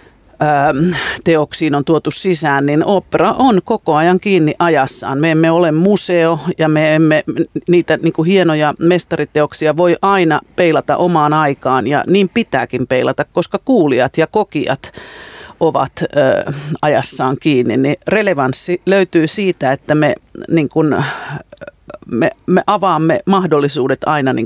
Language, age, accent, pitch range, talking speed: Finnish, 40-59, native, 145-180 Hz, 115 wpm